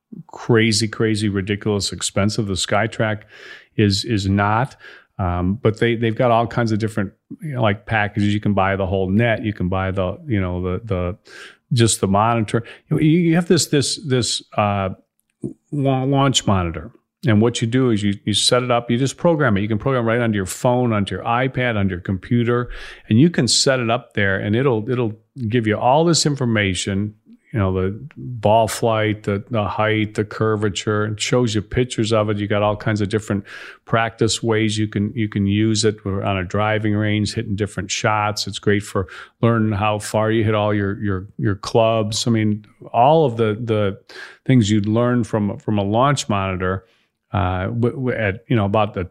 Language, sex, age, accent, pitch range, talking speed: English, male, 40-59, American, 100-120 Hz, 195 wpm